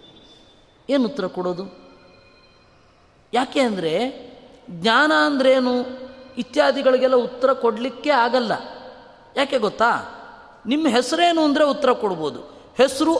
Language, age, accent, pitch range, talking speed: Kannada, 20-39, native, 225-280 Hz, 85 wpm